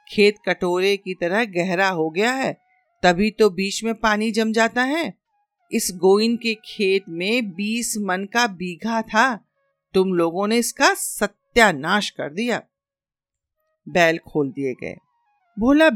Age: 50-69